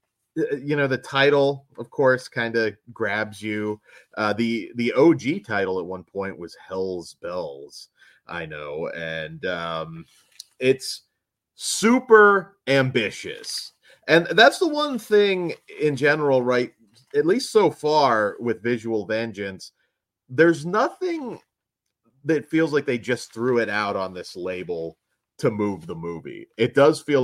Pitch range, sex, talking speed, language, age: 95-130 Hz, male, 140 wpm, English, 30-49